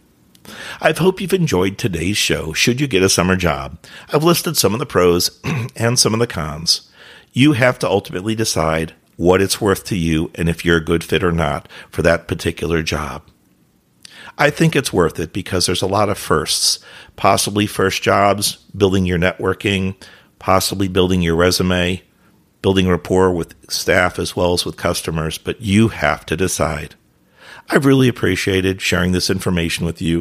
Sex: male